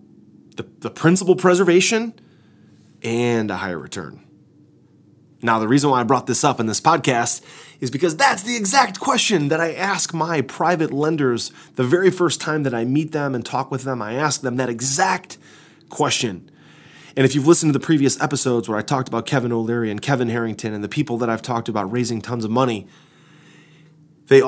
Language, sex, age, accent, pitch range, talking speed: English, male, 30-49, American, 110-155 Hz, 190 wpm